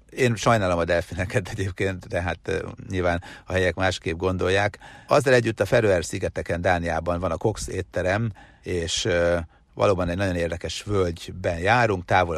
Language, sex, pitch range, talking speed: Hungarian, male, 85-100 Hz, 145 wpm